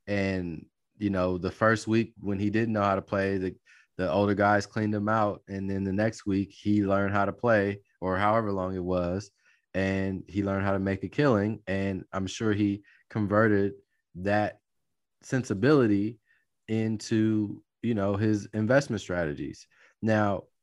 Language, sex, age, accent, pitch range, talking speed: English, male, 30-49, American, 95-110 Hz, 165 wpm